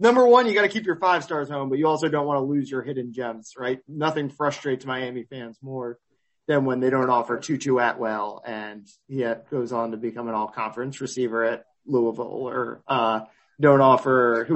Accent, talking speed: American, 215 wpm